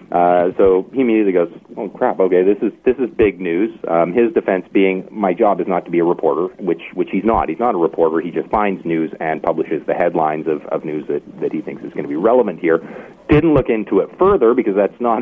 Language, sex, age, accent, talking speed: English, male, 40-59, American, 250 wpm